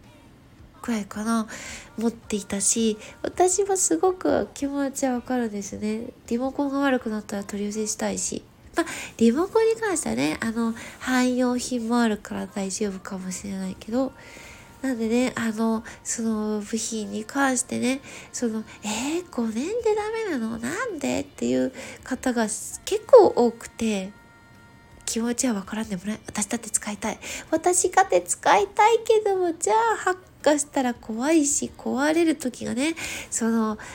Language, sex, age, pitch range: Japanese, female, 20-39, 215-285 Hz